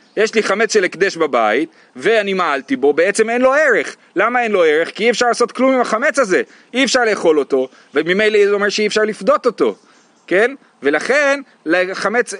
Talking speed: 190 wpm